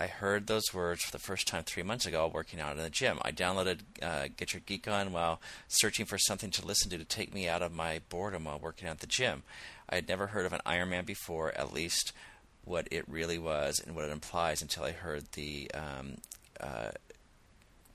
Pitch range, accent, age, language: 80-95 Hz, American, 40-59, English